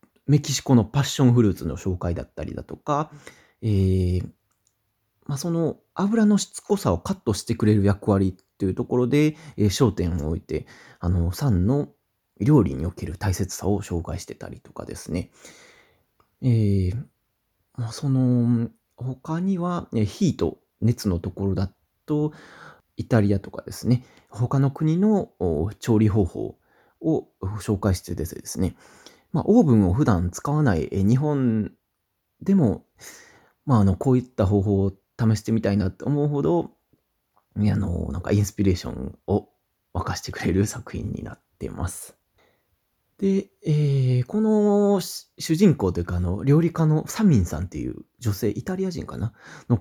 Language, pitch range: Japanese, 95-145 Hz